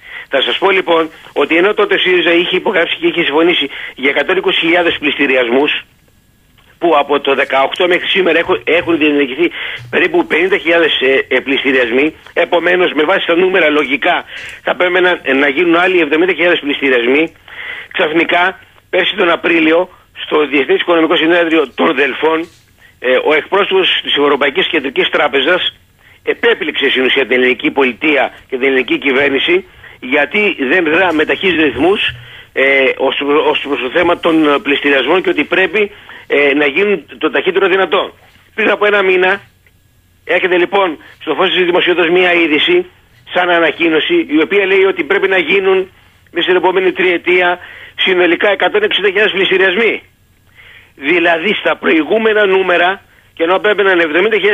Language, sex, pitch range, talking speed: Greek, male, 155-205 Hz, 140 wpm